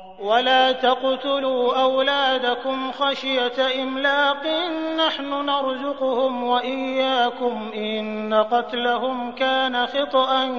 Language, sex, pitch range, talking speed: Arabic, male, 245-285 Hz, 70 wpm